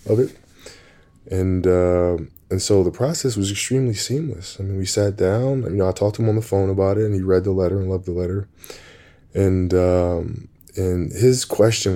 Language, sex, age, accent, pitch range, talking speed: English, male, 20-39, American, 90-100 Hz, 205 wpm